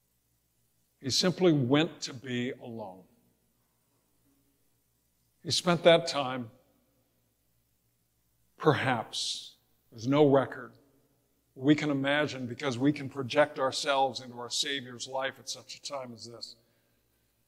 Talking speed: 110 wpm